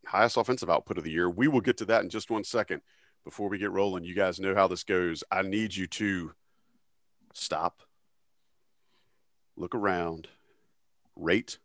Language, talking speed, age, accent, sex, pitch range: English, 170 wpm, 40-59, American, male, 95-125 Hz